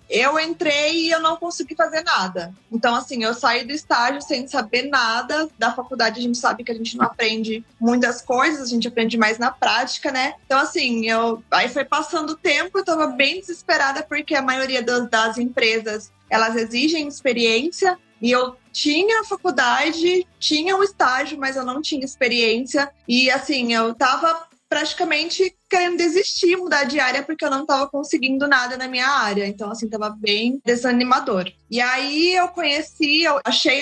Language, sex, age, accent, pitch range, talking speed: Portuguese, female, 20-39, Brazilian, 235-315 Hz, 175 wpm